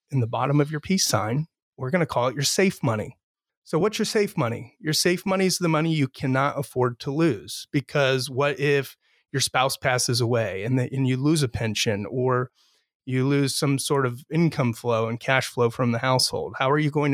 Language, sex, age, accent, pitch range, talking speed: English, male, 30-49, American, 130-155 Hz, 220 wpm